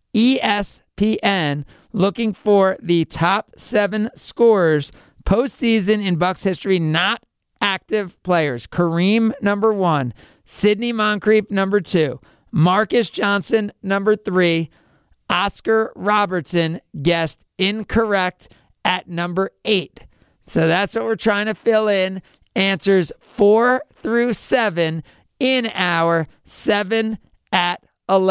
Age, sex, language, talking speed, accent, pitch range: 40-59, male, English, 100 wpm, American, 175-210 Hz